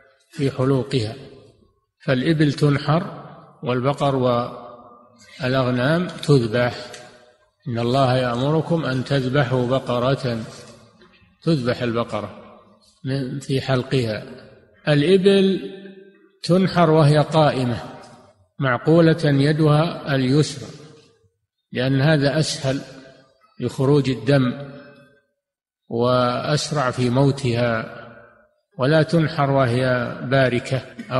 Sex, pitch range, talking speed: male, 120-150 Hz, 70 wpm